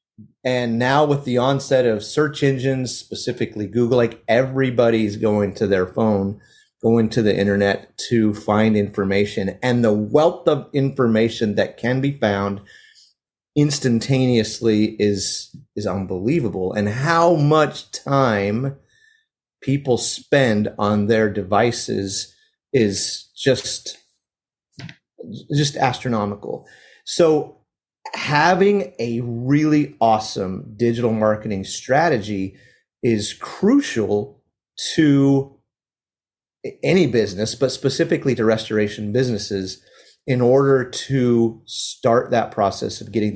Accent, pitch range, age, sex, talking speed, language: American, 105-135 Hz, 30-49, male, 105 wpm, English